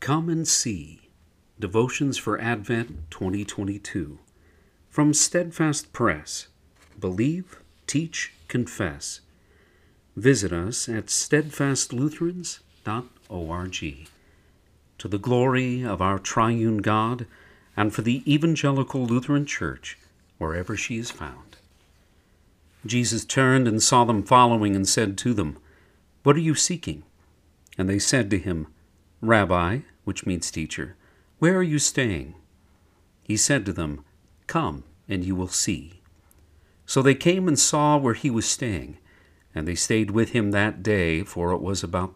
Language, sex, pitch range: English, male, 85-120 Hz